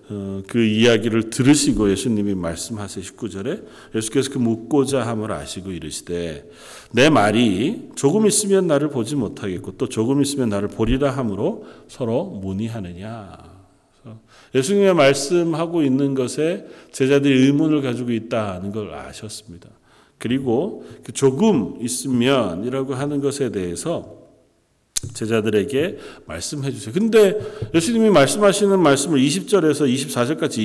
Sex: male